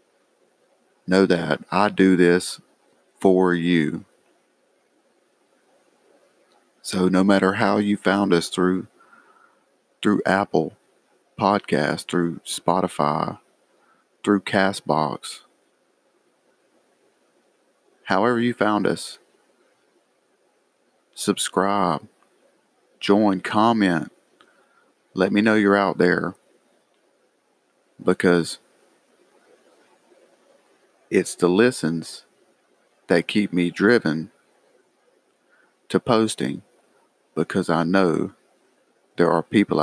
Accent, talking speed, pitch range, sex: American, 75 wpm, 90-100 Hz, male